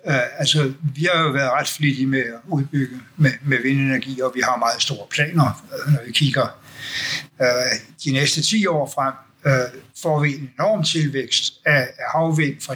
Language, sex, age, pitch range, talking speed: Danish, male, 60-79, 130-155 Hz, 185 wpm